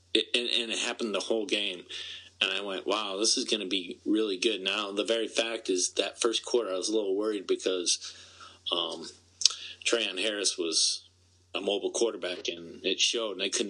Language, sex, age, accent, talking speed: English, male, 30-49, American, 200 wpm